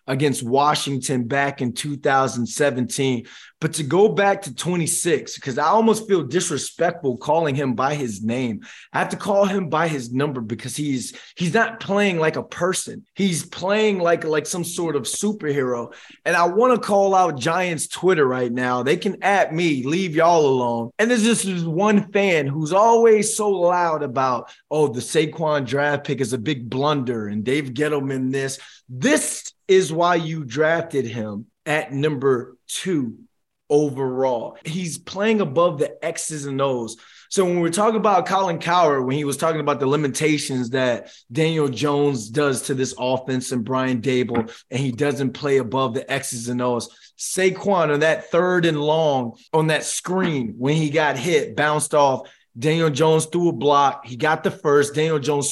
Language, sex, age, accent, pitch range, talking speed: English, male, 20-39, American, 130-175 Hz, 175 wpm